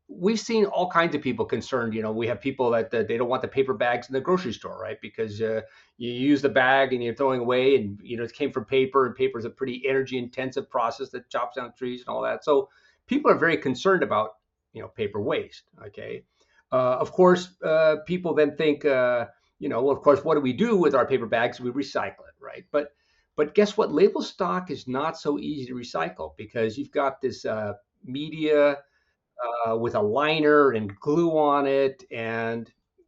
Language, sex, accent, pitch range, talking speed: English, male, American, 125-180 Hz, 215 wpm